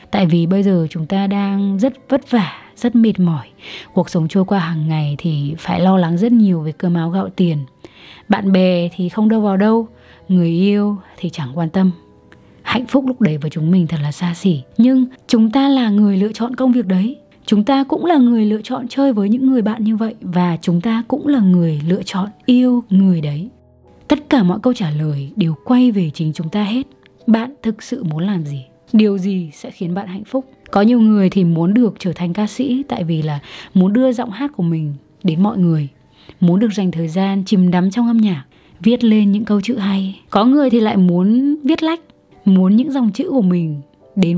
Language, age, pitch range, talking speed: Vietnamese, 20-39, 175-235 Hz, 225 wpm